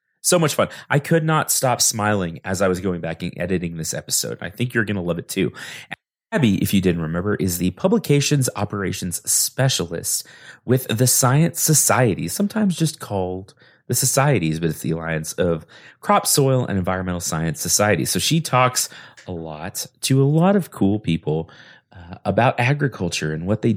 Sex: male